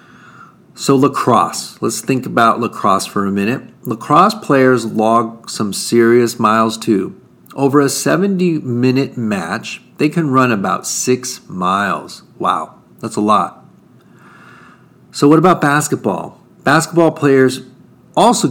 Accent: American